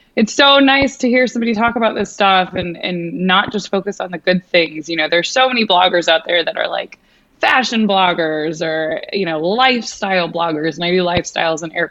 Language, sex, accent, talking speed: English, female, American, 205 wpm